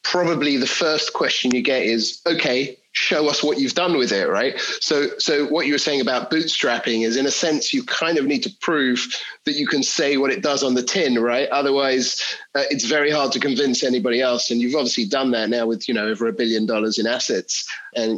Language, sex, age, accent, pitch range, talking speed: English, male, 30-49, British, 110-135 Hz, 230 wpm